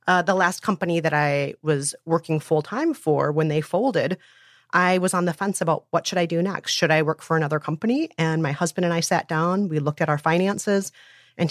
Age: 30-49